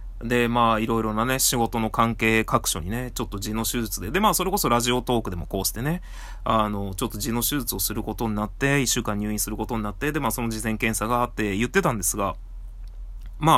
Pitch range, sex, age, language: 100-140 Hz, male, 20-39, Japanese